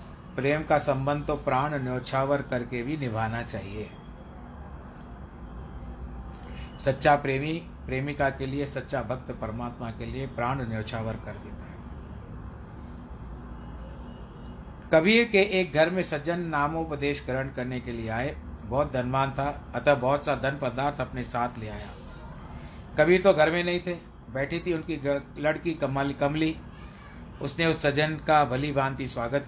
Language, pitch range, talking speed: Hindi, 115-150 Hz, 140 wpm